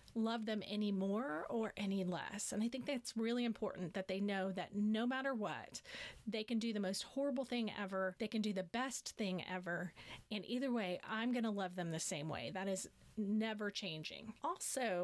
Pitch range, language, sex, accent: 195-235 Hz, English, female, American